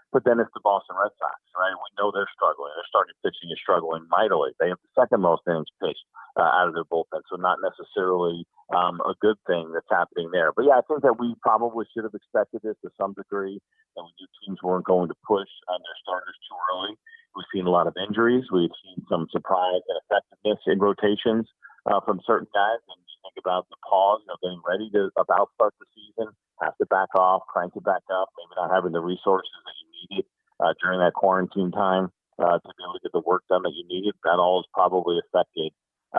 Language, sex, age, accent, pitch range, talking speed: English, male, 50-69, American, 90-145 Hz, 225 wpm